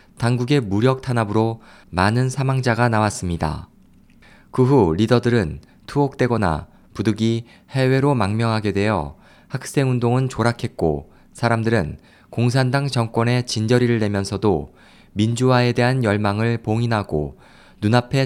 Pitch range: 105-130 Hz